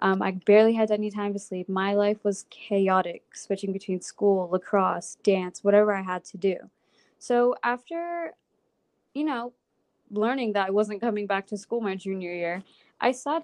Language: English